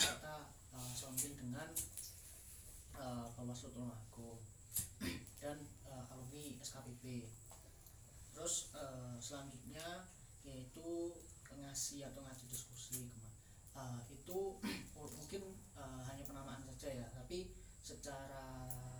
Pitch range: 85-130 Hz